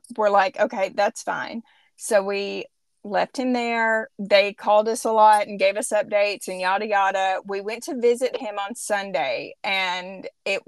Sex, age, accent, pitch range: female, 30-49, American, 200-255 Hz